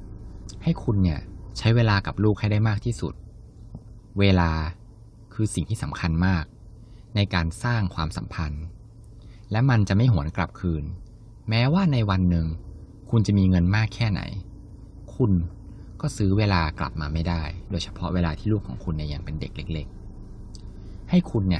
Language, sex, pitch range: Thai, male, 85-110 Hz